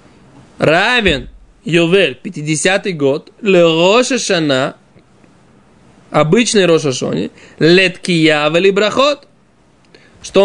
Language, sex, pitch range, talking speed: Russian, male, 155-205 Hz, 65 wpm